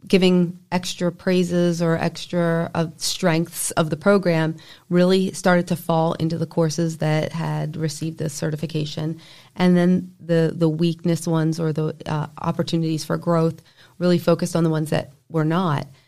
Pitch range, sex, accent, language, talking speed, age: 155-180 Hz, female, American, English, 155 wpm, 40-59